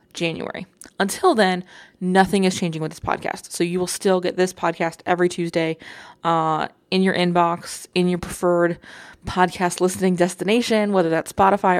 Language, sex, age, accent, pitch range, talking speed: English, female, 20-39, American, 175-210 Hz, 160 wpm